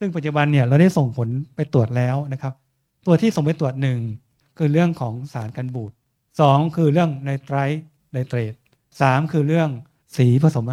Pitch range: 125-150 Hz